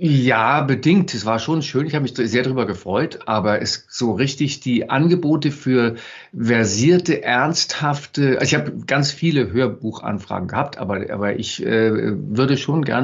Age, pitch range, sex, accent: 50-69, 115-145 Hz, male, German